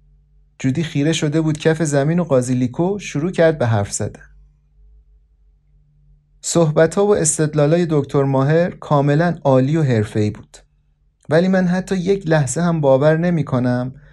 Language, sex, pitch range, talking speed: Persian, male, 120-150 Hz, 135 wpm